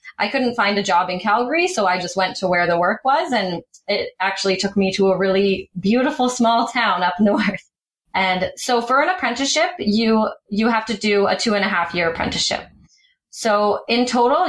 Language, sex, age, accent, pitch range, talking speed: English, female, 20-39, American, 190-235 Hz, 205 wpm